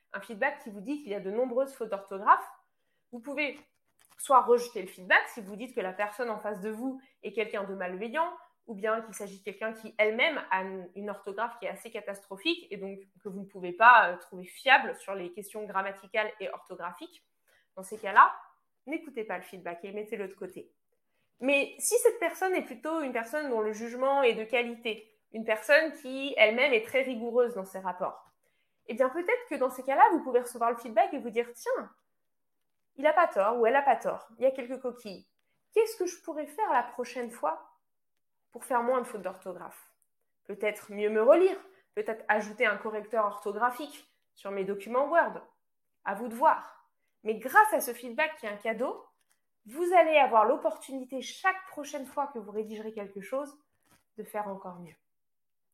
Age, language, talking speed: 20-39, French, 195 wpm